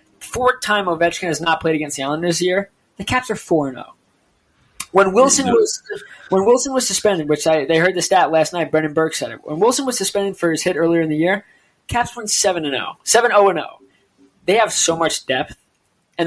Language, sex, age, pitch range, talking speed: English, male, 20-39, 155-200 Hz, 220 wpm